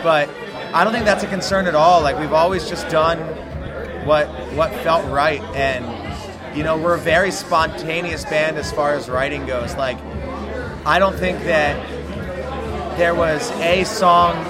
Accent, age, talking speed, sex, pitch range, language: American, 30-49, 165 wpm, male, 150-175 Hz, English